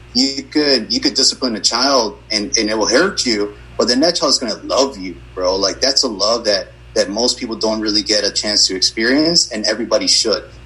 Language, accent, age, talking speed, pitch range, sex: English, American, 30-49, 225 wpm, 105-135 Hz, male